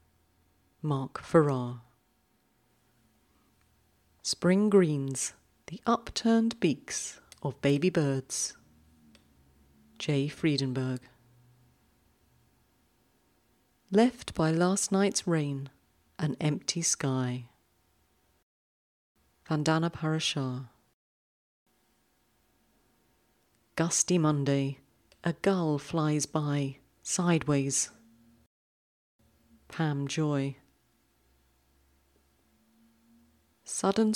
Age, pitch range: 40-59, 115-160 Hz